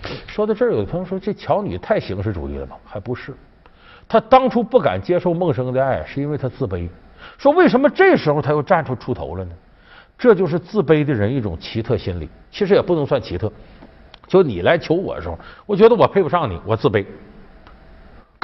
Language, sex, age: Chinese, male, 50-69